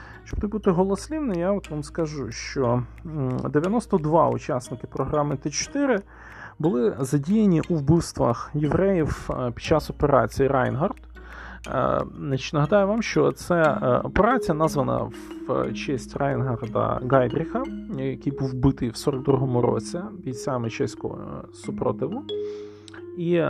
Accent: native